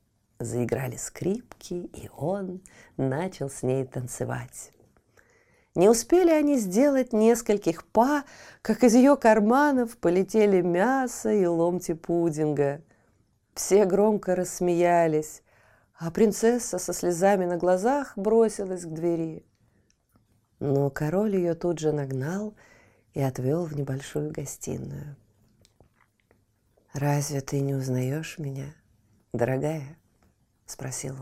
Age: 30-49